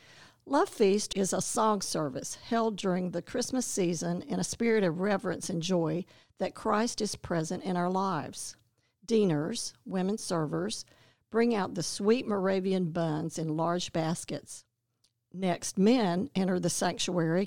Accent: American